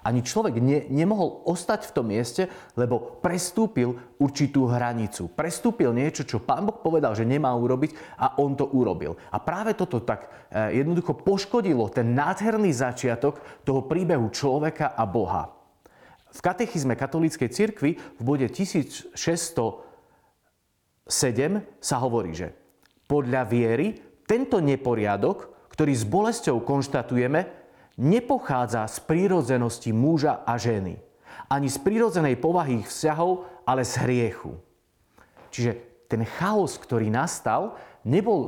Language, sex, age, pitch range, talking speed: Slovak, male, 40-59, 120-160 Hz, 120 wpm